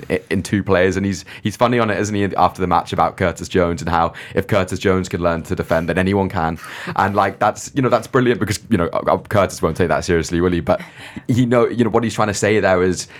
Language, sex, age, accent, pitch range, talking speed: English, male, 20-39, British, 85-100 Hz, 270 wpm